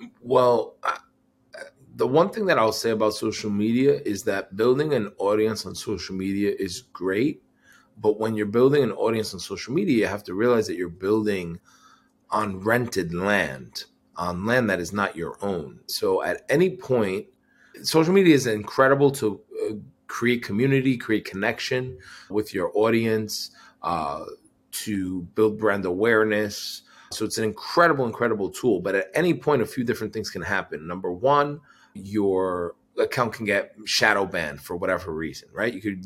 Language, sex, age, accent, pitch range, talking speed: English, male, 30-49, American, 100-130 Hz, 160 wpm